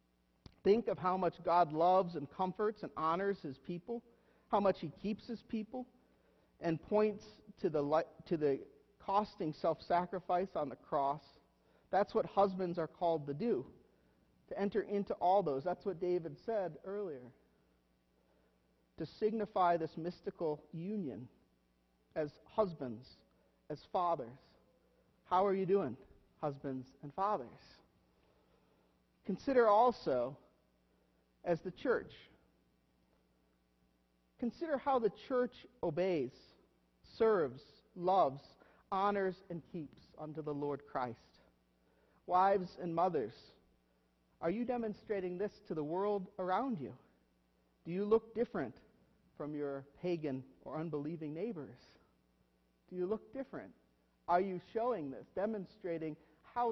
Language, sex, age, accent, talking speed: English, male, 40-59, American, 120 wpm